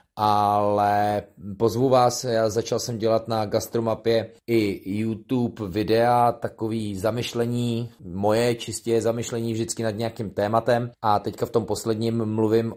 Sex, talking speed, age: male, 125 wpm, 30-49